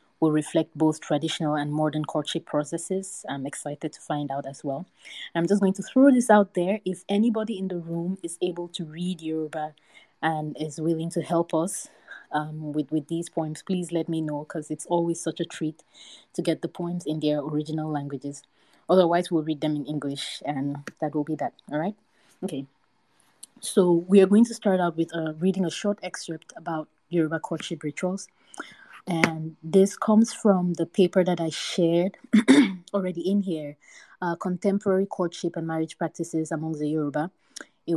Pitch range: 155-180 Hz